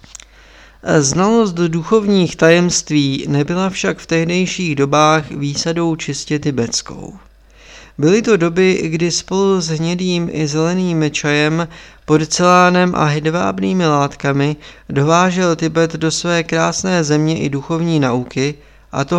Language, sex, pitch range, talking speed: Czech, male, 130-165 Hz, 115 wpm